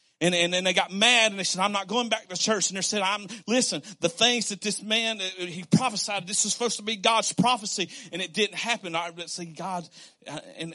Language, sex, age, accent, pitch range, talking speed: English, male, 40-59, American, 160-200 Hz, 245 wpm